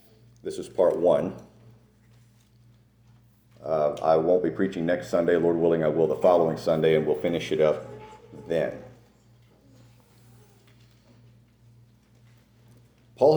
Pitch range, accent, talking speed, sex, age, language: 95-120 Hz, American, 110 wpm, male, 50-69, English